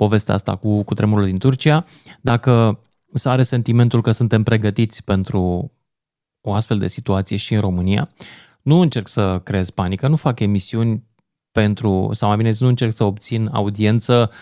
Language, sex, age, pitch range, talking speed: Romanian, male, 20-39, 105-140 Hz, 160 wpm